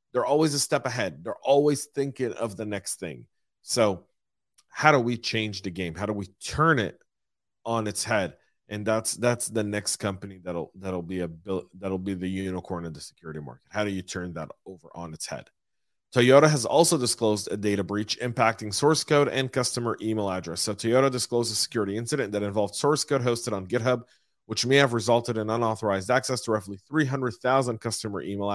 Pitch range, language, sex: 105-130 Hz, English, male